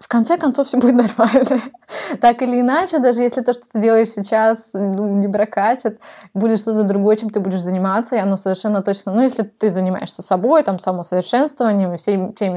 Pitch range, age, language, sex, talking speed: 200-240 Hz, 20-39, Russian, female, 190 wpm